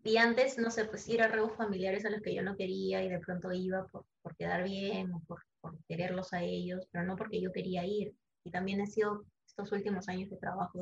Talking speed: 245 wpm